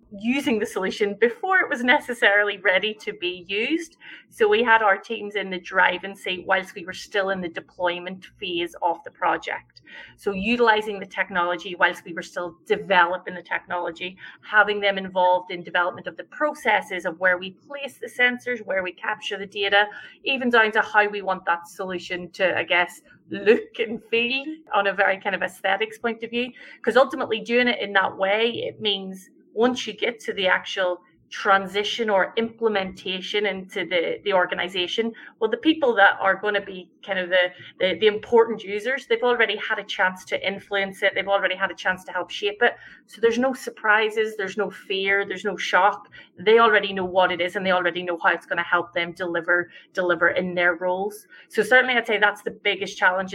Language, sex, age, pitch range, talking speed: English, female, 30-49, 185-225 Hz, 200 wpm